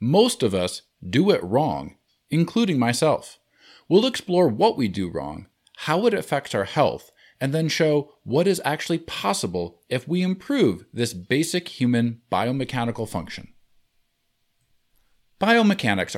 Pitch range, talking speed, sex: 110-165 Hz, 130 wpm, male